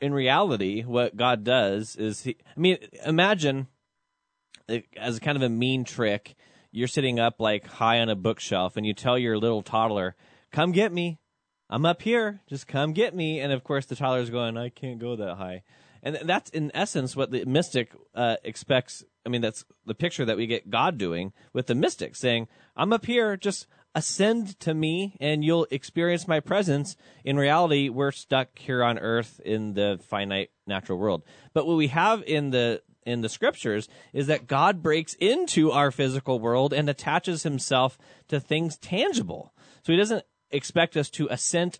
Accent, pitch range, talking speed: American, 120-160 Hz, 180 wpm